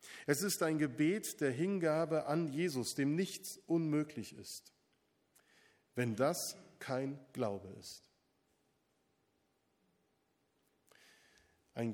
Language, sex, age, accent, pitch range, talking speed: German, male, 50-69, German, 125-170 Hz, 90 wpm